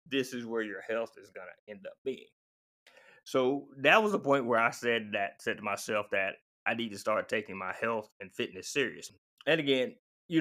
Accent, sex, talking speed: American, male, 215 wpm